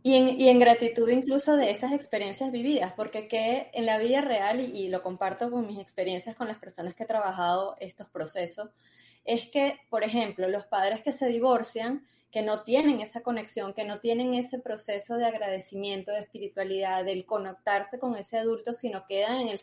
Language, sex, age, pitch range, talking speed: Spanish, female, 20-39, 200-255 Hz, 195 wpm